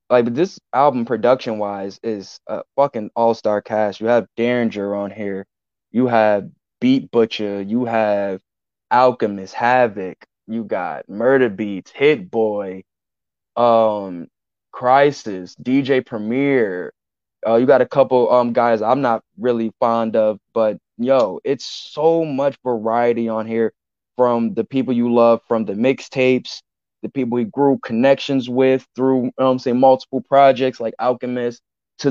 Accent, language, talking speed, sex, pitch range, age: American, English, 140 wpm, male, 110-130 Hz, 10-29